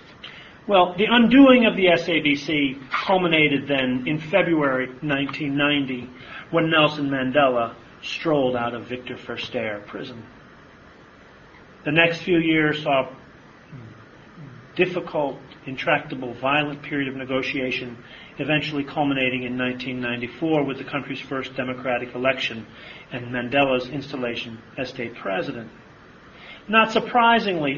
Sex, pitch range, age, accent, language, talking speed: male, 130-175 Hz, 40-59, American, English, 110 wpm